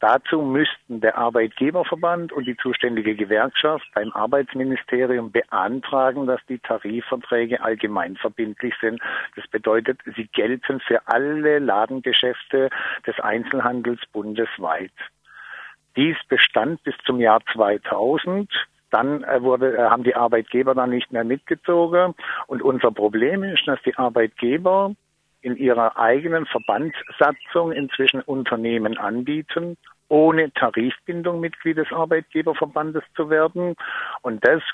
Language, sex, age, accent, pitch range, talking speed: German, male, 50-69, German, 120-155 Hz, 110 wpm